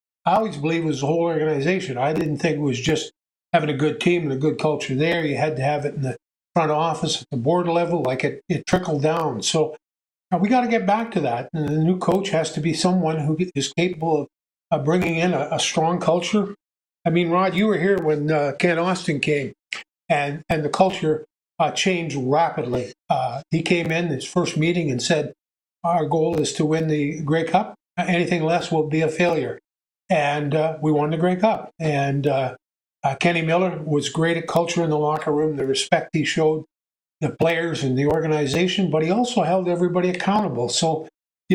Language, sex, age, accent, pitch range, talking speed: English, male, 50-69, American, 150-175 Hz, 210 wpm